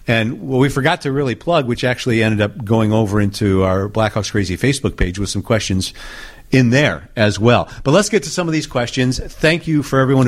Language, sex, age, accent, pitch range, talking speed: English, male, 50-69, American, 105-130 Hz, 230 wpm